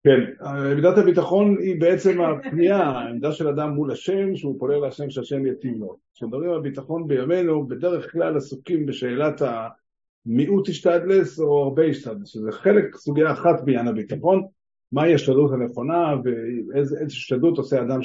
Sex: male